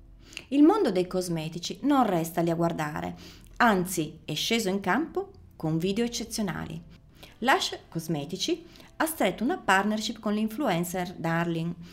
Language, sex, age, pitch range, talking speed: Italian, female, 30-49, 165-230 Hz, 130 wpm